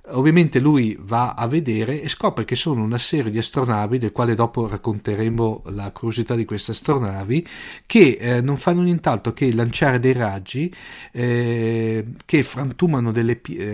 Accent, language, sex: native, Italian, male